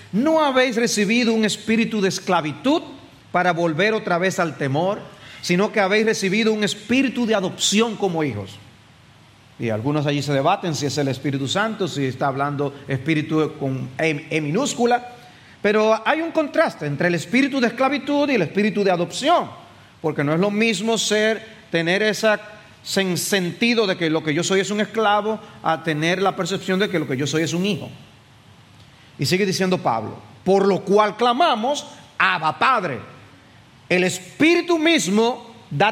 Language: Spanish